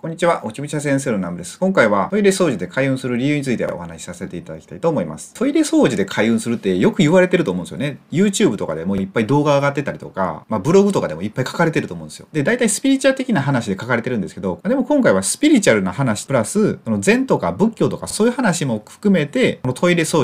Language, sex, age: Japanese, male, 30-49